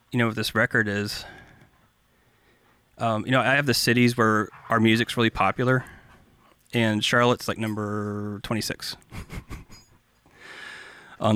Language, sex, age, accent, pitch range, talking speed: English, male, 30-49, American, 110-130 Hz, 125 wpm